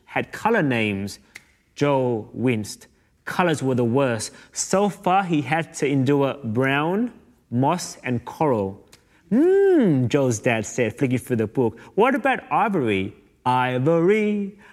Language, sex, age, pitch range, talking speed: English, male, 30-49, 115-175 Hz, 125 wpm